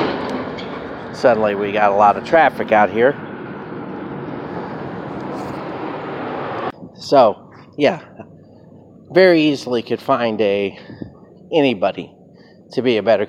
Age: 40-59